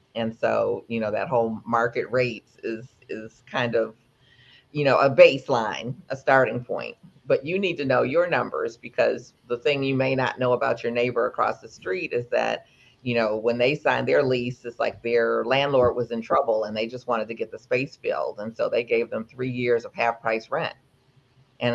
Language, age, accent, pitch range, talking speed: English, 50-69, American, 115-135 Hz, 210 wpm